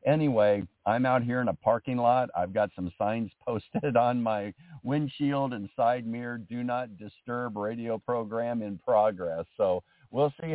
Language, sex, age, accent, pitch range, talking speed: English, male, 50-69, American, 95-120 Hz, 165 wpm